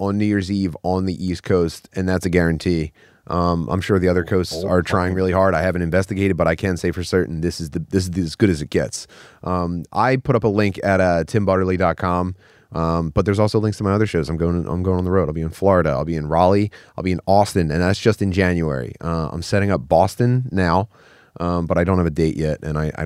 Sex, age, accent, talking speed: male, 30-49, American, 270 wpm